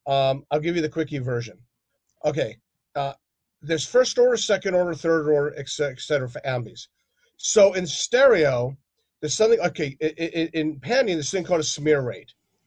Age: 40-59